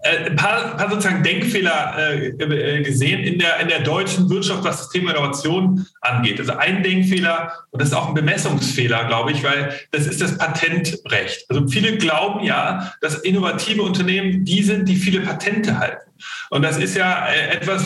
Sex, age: male, 40-59